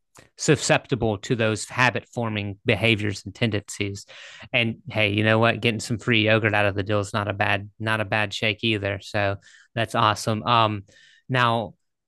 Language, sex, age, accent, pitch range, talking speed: English, male, 30-49, American, 110-125 Hz, 175 wpm